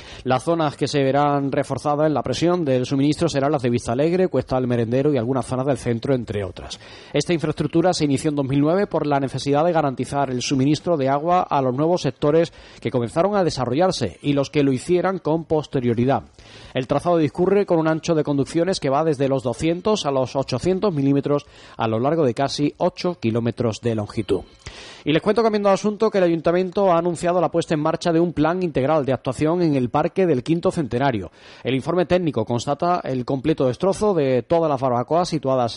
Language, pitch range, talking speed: Spanish, 130-165 Hz, 205 wpm